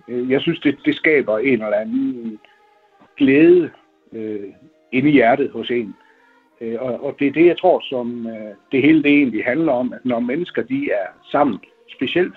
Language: Danish